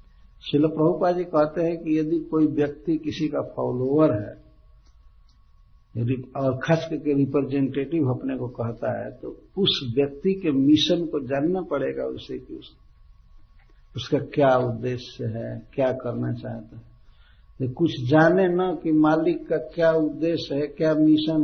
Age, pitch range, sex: 60-79, 120-160 Hz, male